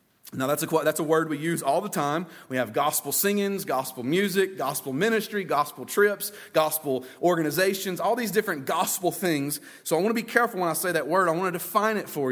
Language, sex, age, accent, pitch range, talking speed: English, male, 30-49, American, 145-195 Hz, 220 wpm